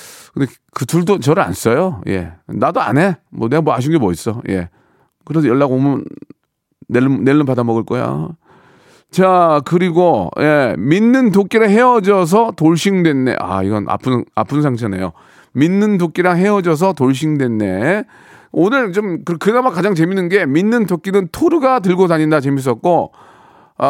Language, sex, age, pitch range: Korean, male, 40-59, 130-190 Hz